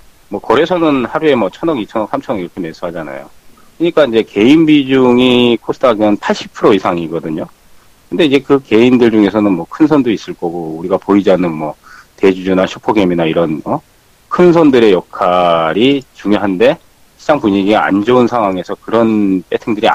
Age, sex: 40-59, male